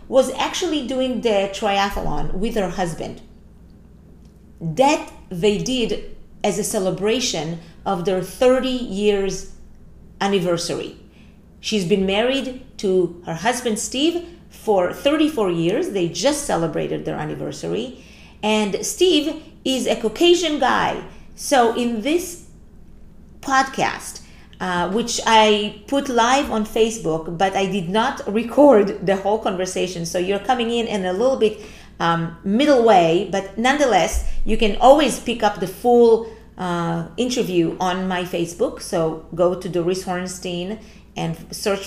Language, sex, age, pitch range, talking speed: English, female, 40-59, 185-240 Hz, 130 wpm